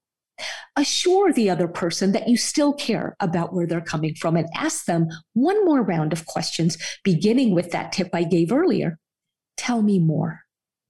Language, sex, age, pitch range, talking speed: English, female, 40-59, 175-275 Hz, 170 wpm